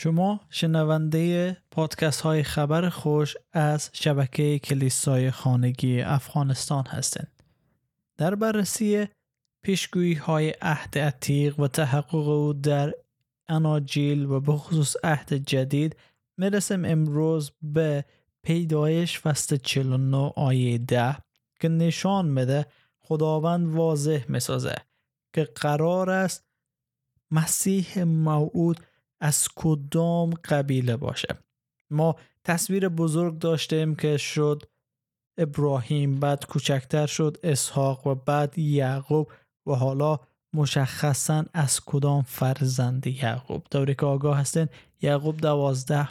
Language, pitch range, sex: Persian, 135-160 Hz, male